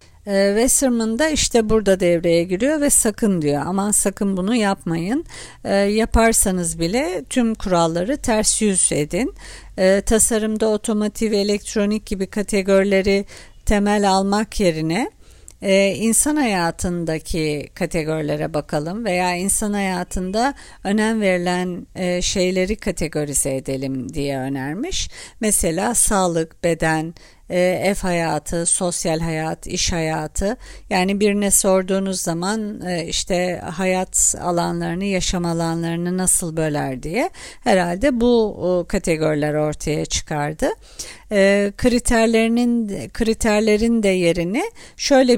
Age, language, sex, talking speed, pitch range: 50-69, Turkish, female, 105 wpm, 170-220 Hz